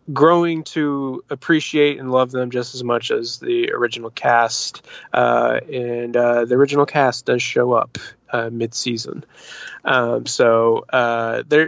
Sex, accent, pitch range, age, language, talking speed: male, American, 120-140 Hz, 20-39, English, 135 wpm